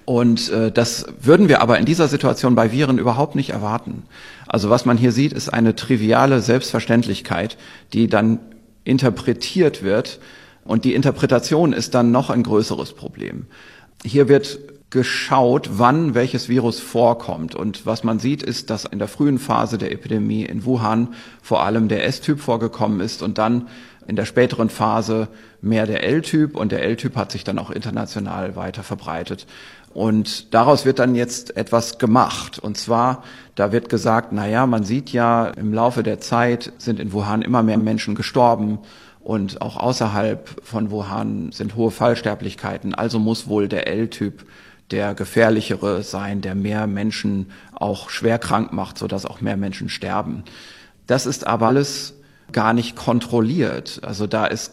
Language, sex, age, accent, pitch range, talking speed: German, male, 40-59, German, 110-125 Hz, 160 wpm